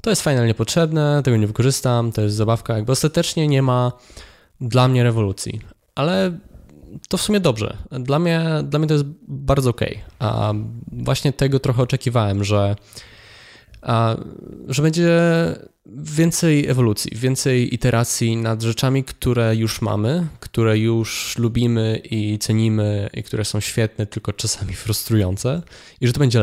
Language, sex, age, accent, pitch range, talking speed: Polish, male, 20-39, native, 110-140 Hz, 145 wpm